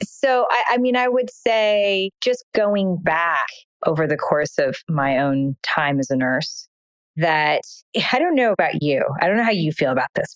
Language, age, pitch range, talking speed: English, 30-49, 160-250 Hz, 195 wpm